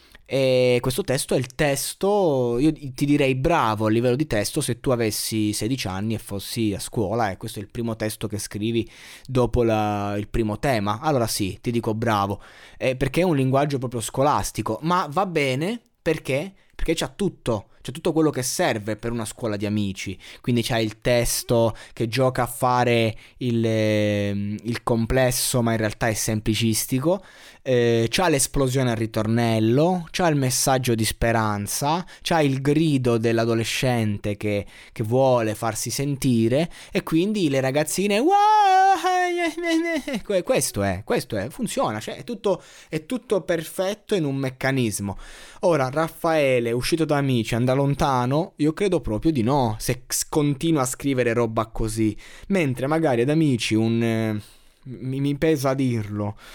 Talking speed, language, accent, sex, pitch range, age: 155 wpm, Italian, native, male, 110-150 Hz, 20-39